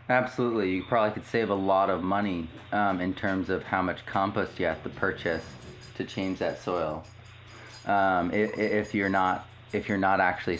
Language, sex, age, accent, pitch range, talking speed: English, male, 30-49, American, 105-145 Hz, 185 wpm